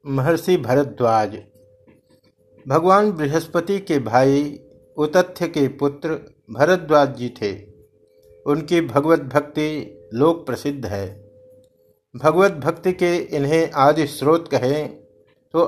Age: 60-79